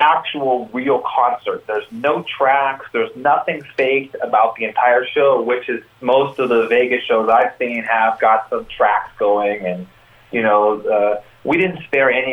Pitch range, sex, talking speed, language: 105-140 Hz, male, 170 wpm, English